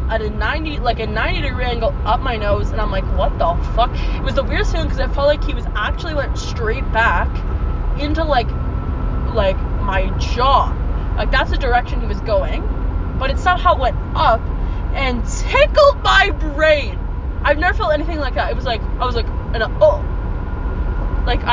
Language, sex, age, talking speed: English, female, 20-39, 185 wpm